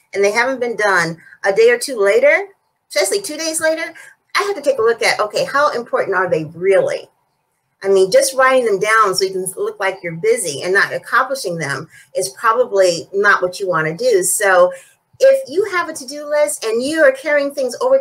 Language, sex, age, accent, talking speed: English, female, 40-59, American, 215 wpm